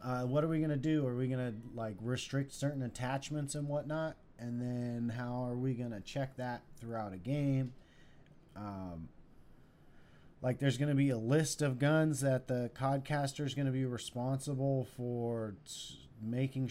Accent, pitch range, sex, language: American, 110-135 Hz, male, English